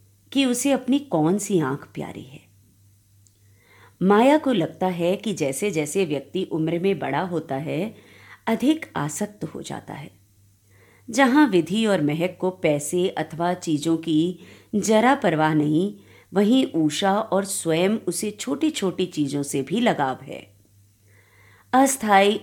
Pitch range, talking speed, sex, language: 135-195 Hz, 140 wpm, female, Hindi